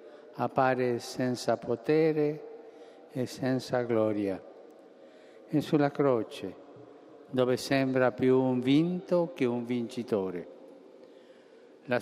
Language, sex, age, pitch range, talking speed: Italian, male, 50-69, 110-130 Hz, 90 wpm